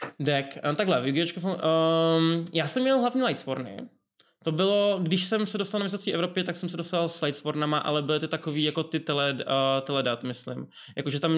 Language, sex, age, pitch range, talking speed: Czech, male, 20-39, 145-170 Hz, 185 wpm